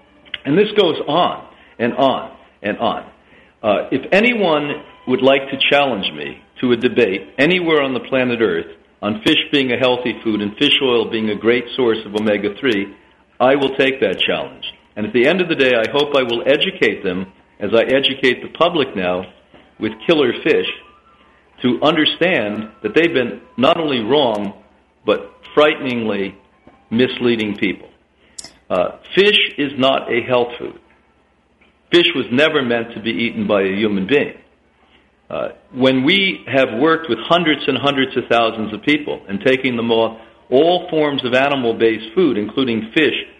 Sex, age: male, 50-69